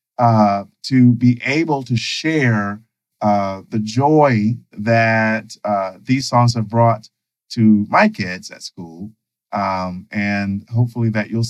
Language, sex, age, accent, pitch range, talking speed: English, male, 50-69, American, 100-120 Hz, 130 wpm